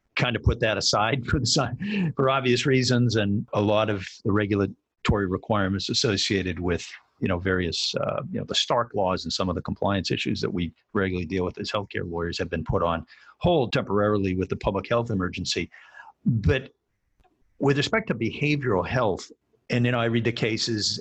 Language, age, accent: English, 50-69, American